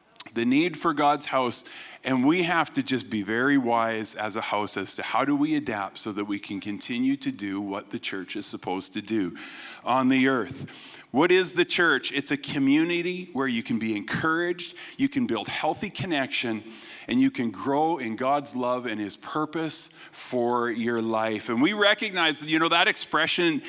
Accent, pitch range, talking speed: American, 130-180 Hz, 195 wpm